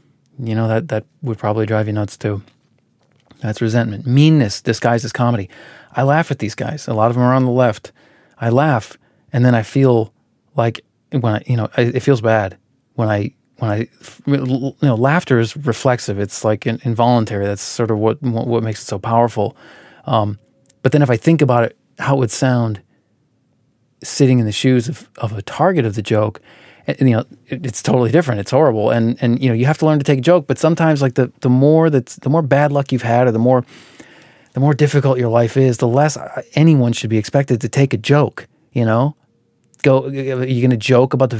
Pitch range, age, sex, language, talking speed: 115-140 Hz, 30-49, male, English, 215 wpm